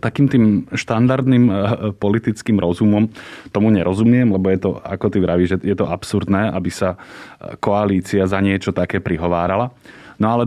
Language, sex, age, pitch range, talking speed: Slovak, male, 20-39, 95-110 Hz, 150 wpm